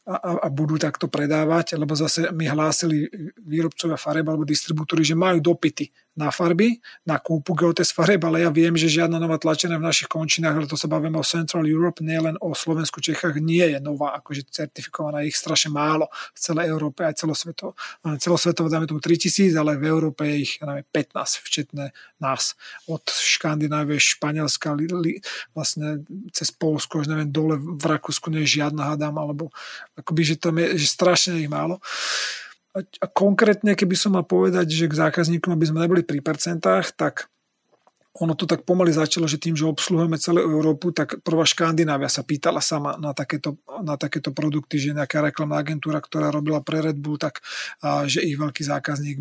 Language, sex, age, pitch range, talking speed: Slovak, male, 30-49, 150-170 Hz, 180 wpm